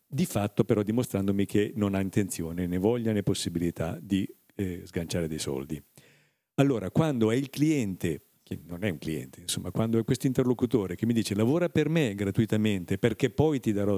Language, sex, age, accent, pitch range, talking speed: Italian, male, 50-69, native, 95-120 Hz, 185 wpm